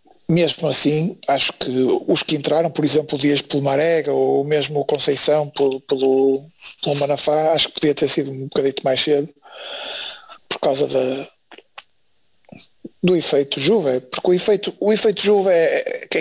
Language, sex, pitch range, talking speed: Portuguese, male, 155-200 Hz, 160 wpm